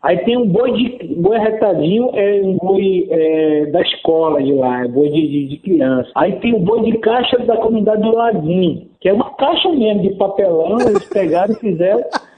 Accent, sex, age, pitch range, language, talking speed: Brazilian, male, 60-79, 155-215 Hz, Portuguese, 215 wpm